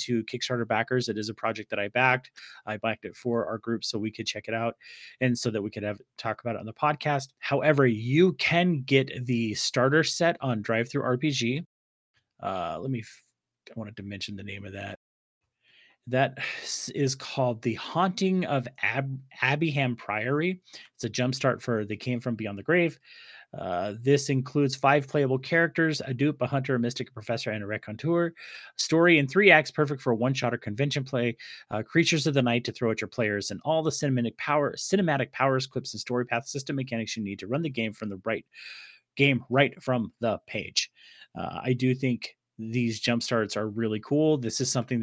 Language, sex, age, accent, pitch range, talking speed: English, male, 30-49, American, 110-140 Hz, 205 wpm